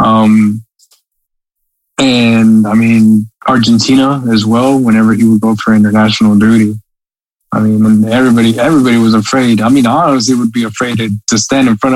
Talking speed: 155 wpm